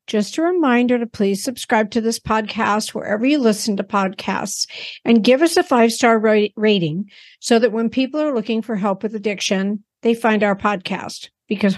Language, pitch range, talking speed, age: English, 210-255 Hz, 180 wpm, 50-69